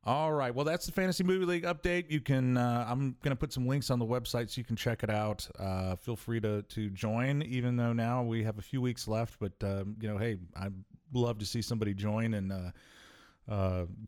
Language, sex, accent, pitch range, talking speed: English, male, American, 95-120 Hz, 240 wpm